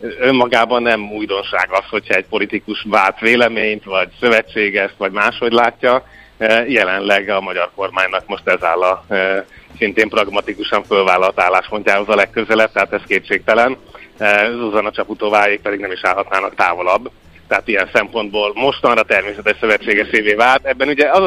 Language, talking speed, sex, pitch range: Hungarian, 135 wpm, male, 100-120 Hz